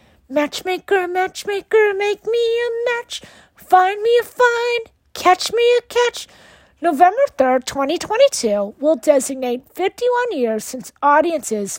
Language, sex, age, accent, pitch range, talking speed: English, female, 50-69, American, 250-380 Hz, 115 wpm